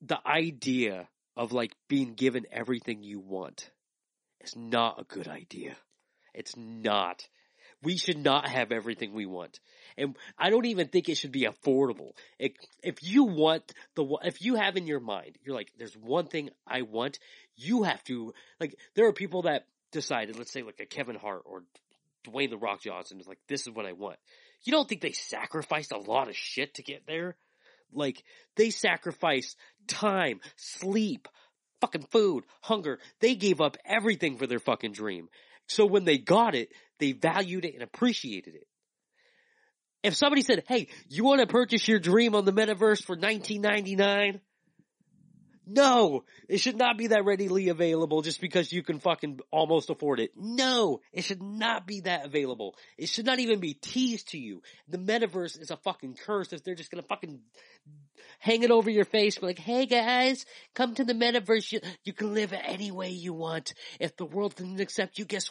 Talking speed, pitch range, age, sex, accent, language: 185 wpm, 150-220 Hz, 30-49, male, American, English